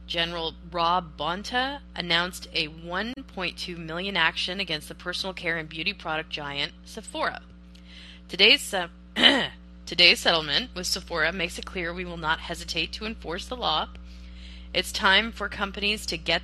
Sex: female